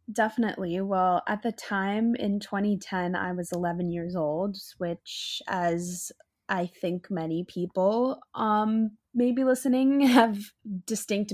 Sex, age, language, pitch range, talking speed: female, 10-29, English, 175-205 Hz, 120 wpm